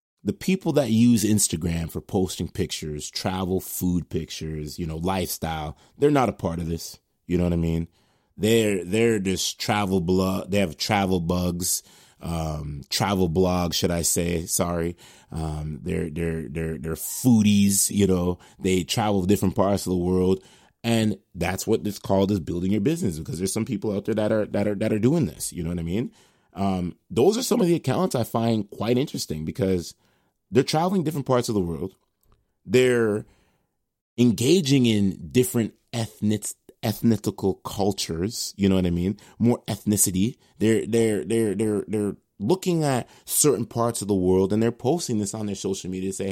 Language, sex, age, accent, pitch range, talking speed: English, male, 30-49, American, 90-115 Hz, 180 wpm